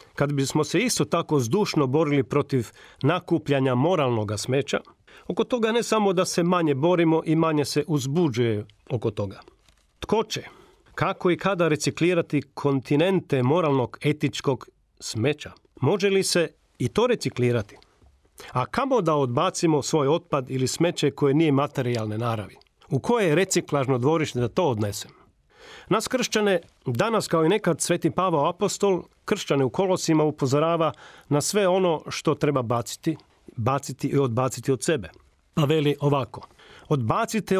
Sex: male